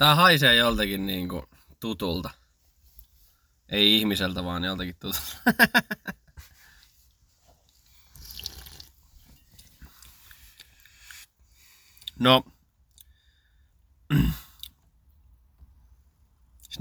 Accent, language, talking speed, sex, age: native, Finnish, 45 wpm, male, 20-39